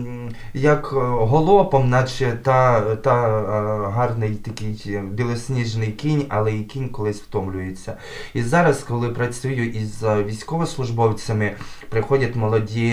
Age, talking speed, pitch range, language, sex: 20-39, 100 wpm, 110-140 Hz, Ukrainian, male